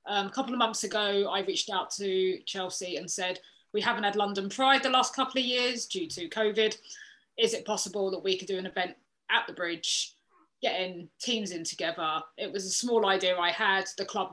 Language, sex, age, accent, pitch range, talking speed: English, female, 20-39, British, 185-225 Hz, 215 wpm